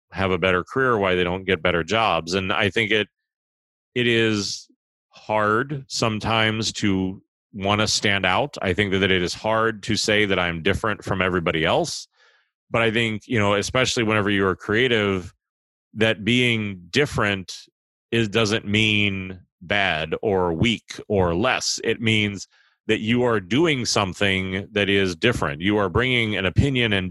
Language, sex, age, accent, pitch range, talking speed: English, male, 30-49, American, 95-115 Hz, 160 wpm